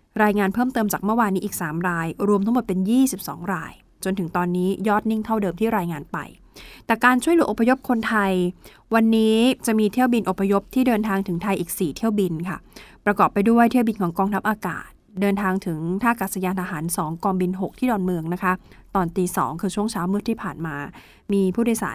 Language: Thai